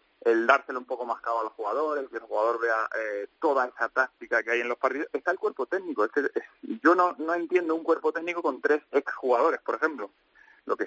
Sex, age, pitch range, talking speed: male, 30-49, 115-165 Hz, 230 wpm